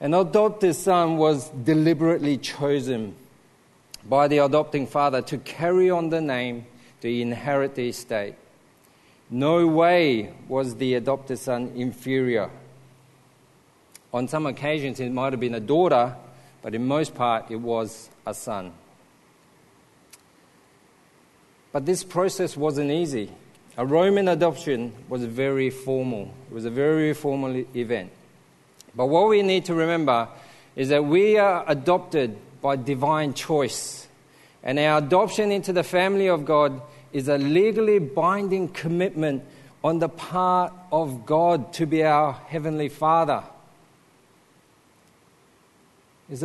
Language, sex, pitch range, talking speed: English, male, 130-170 Hz, 125 wpm